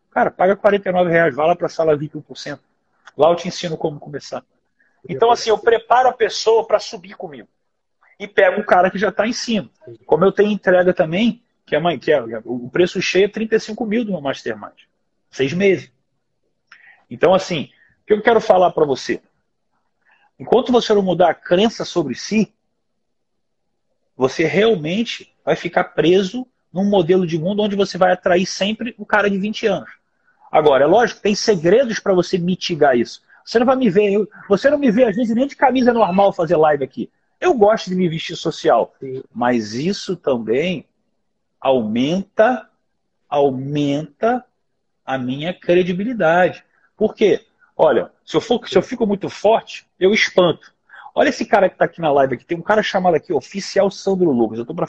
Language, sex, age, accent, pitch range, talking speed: Portuguese, male, 40-59, Brazilian, 165-220 Hz, 180 wpm